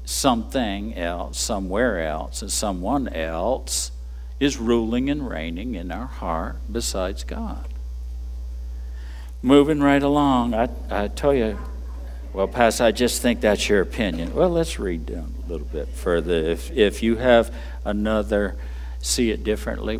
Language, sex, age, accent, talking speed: English, male, 60-79, American, 140 wpm